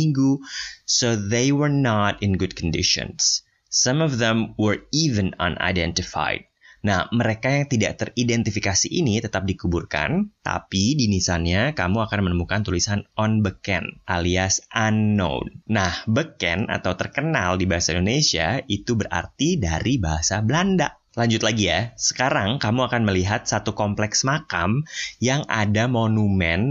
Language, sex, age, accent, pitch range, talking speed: Indonesian, male, 20-39, native, 95-115 Hz, 130 wpm